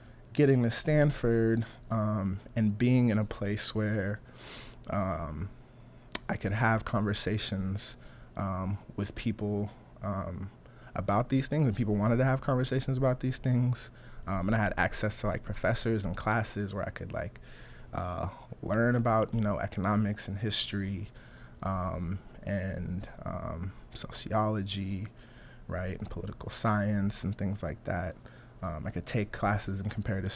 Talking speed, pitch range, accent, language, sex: 140 wpm, 95-115 Hz, American, English, male